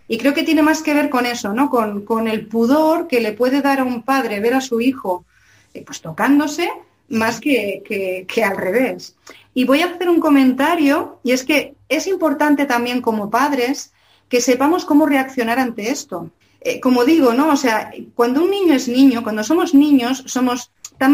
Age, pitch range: 30-49, 230-290 Hz